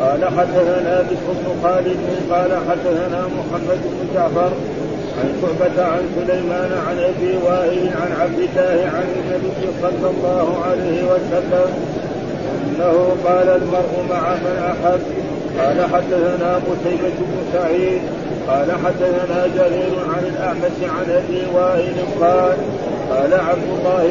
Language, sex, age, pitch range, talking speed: Arabic, male, 40-59, 175-185 Hz, 120 wpm